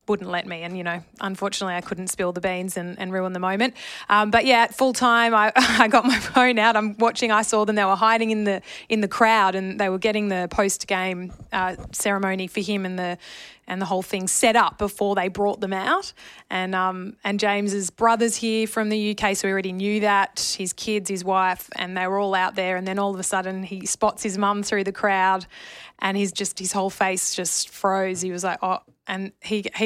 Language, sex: English, female